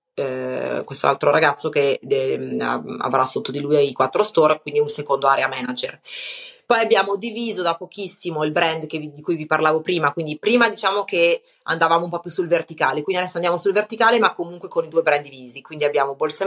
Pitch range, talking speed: 145-190 Hz, 210 wpm